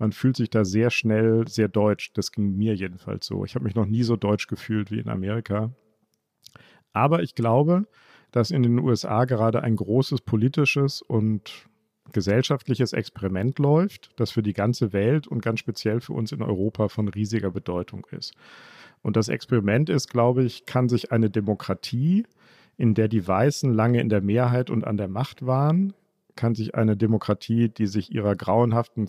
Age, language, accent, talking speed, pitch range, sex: 50-69, German, German, 175 wpm, 105-125 Hz, male